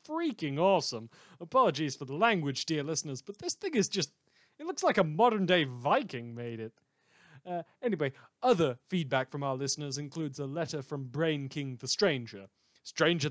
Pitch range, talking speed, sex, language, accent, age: 130-185 Hz, 165 wpm, male, English, British, 30-49